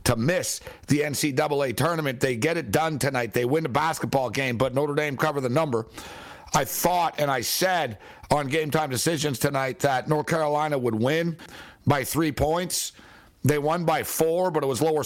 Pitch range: 130-160 Hz